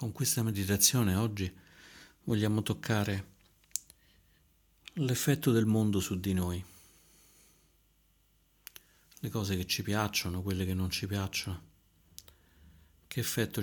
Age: 50-69